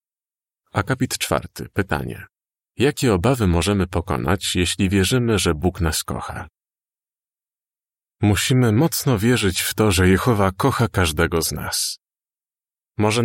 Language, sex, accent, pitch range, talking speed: Polish, male, native, 90-115 Hz, 115 wpm